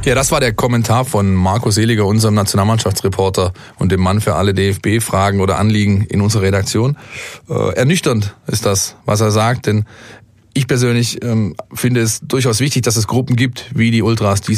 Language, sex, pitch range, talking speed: German, male, 105-115 Hz, 180 wpm